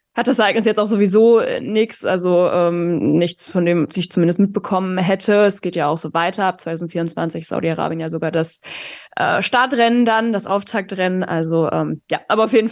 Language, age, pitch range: German, 20-39, 175-200 Hz